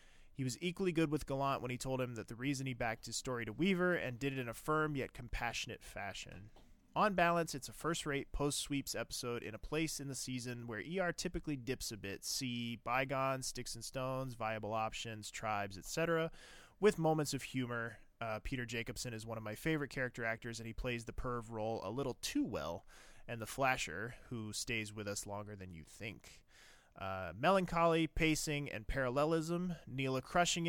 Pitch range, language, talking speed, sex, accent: 110-145 Hz, English, 190 wpm, male, American